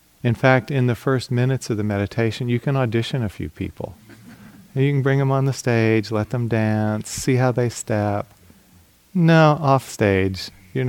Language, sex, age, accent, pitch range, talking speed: English, male, 40-59, American, 95-125 Hz, 180 wpm